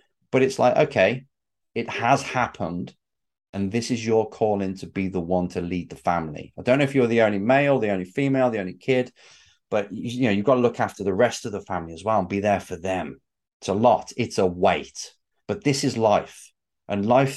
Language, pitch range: English, 95-120 Hz